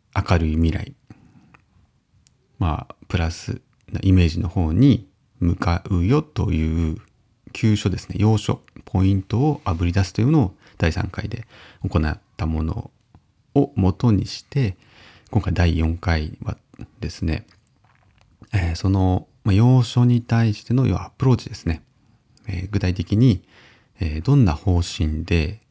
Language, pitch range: Japanese, 85-120 Hz